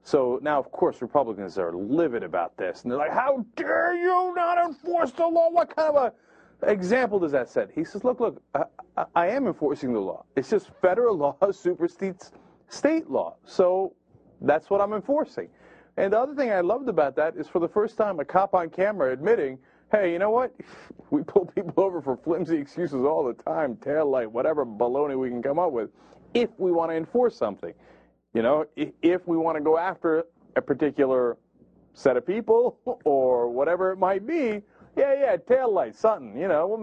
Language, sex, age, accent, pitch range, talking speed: English, male, 40-59, American, 160-250 Hz, 200 wpm